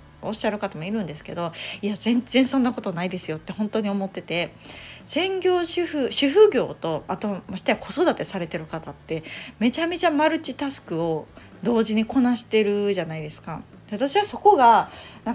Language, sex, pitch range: Japanese, female, 165-245 Hz